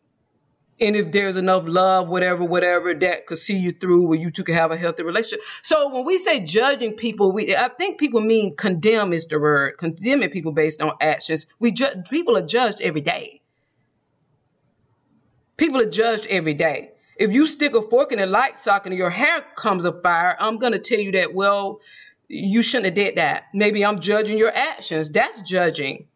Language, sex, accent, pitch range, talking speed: English, female, American, 175-230 Hz, 195 wpm